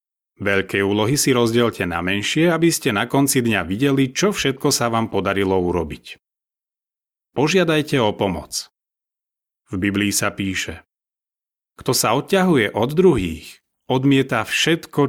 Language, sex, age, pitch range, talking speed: Slovak, male, 30-49, 100-140 Hz, 125 wpm